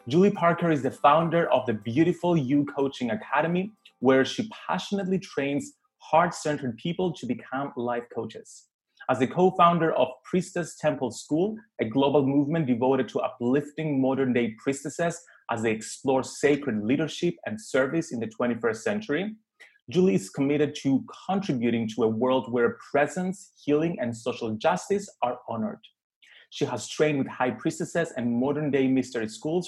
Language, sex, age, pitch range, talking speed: English, male, 30-49, 130-175 Hz, 150 wpm